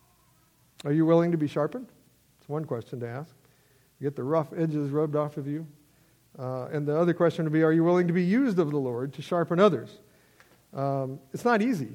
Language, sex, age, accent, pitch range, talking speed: English, male, 50-69, American, 125-160 Hz, 215 wpm